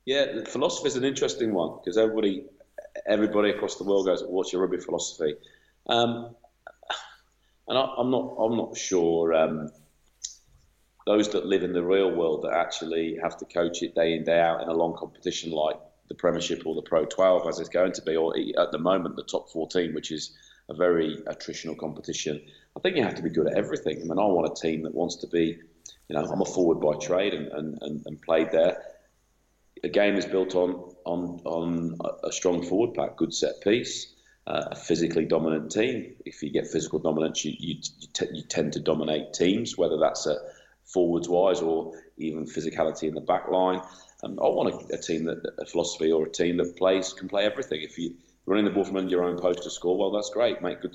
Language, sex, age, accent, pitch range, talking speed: English, male, 30-49, British, 80-100 Hz, 210 wpm